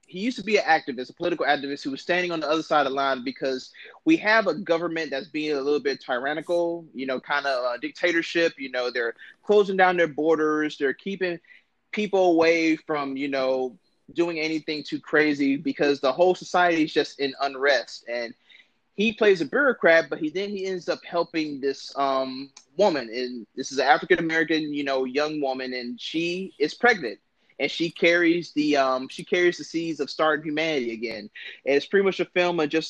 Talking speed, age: 200 wpm, 20-39